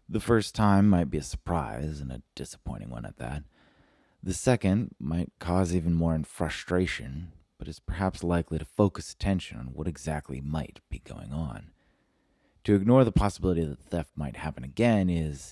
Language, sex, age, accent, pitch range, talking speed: English, male, 30-49, American, 75-90 Hz, 170 wpm